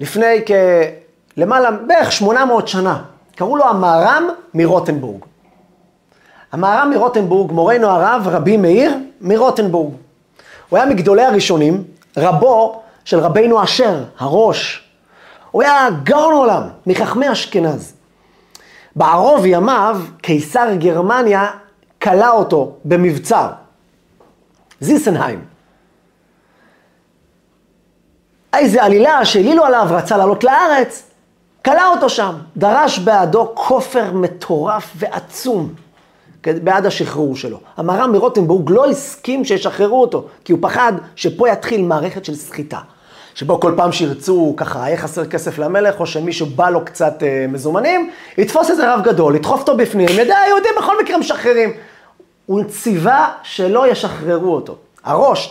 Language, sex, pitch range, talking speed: Hebrew, male, 170-235 Hz, 115 wpm